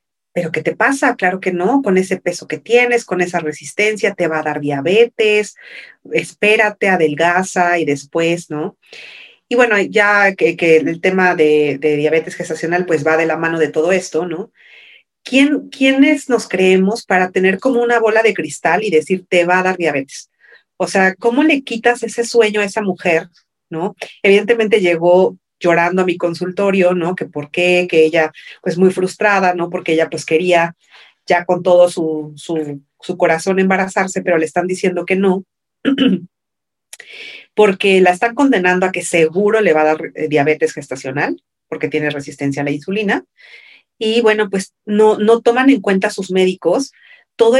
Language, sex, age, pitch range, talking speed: Spanish, female, 40-59, 165-210 Hz, 170 wpm